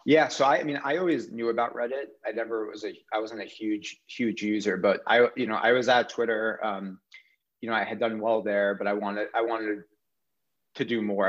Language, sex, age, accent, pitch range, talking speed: English, male, 30-49, American, 95-115 Hz, 235 wpm